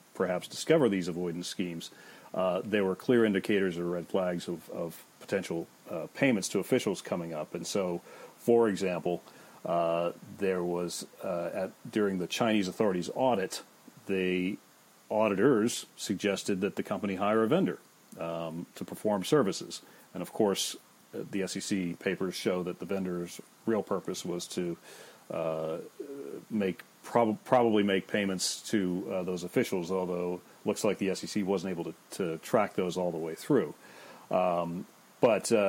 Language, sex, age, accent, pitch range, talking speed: English, male, 40-59, American, 90-105 Hz, 155 wpm